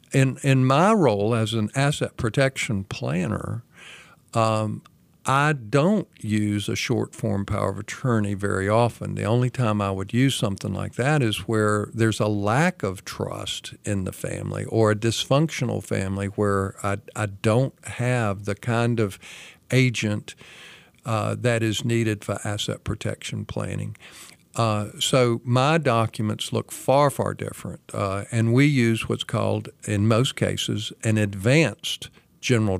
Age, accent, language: 50-69, American, English